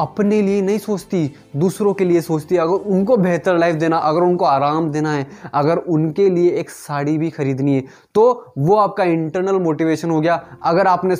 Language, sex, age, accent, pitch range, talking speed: Hindi, male, 20-39, native, 160-195 Hz, 190 wpm